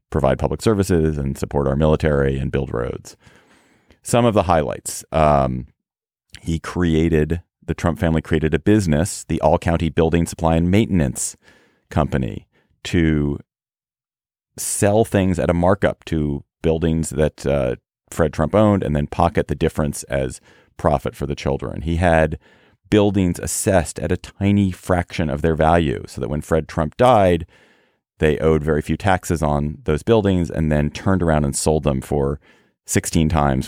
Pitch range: 75-90 Hz